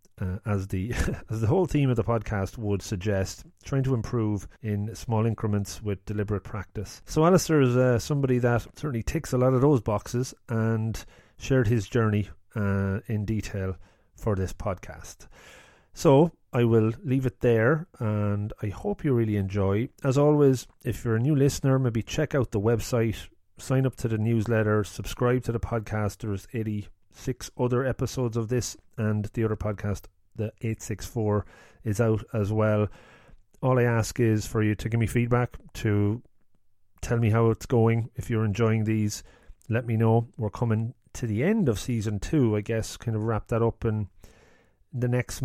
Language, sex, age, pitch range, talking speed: English, male, 30-49, 105-120 Hz, 180 wpm